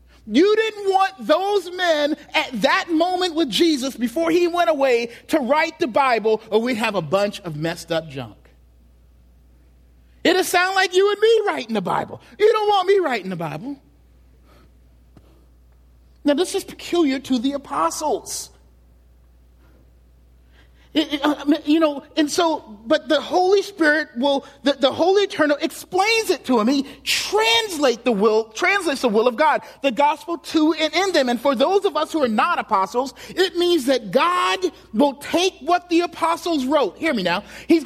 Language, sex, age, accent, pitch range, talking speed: English, male, 40-59, American, 225-345 Hz, 170 wpm